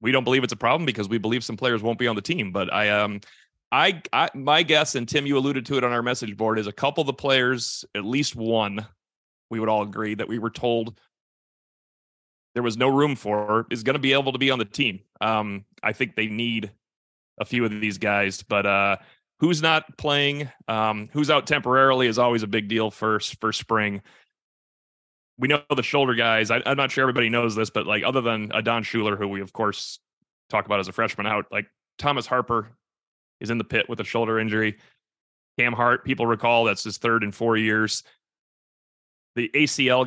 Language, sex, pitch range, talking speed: English, male, 105-125 Hz, 215 wpm